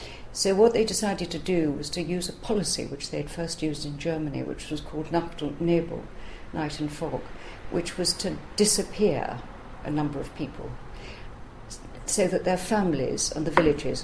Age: 50-69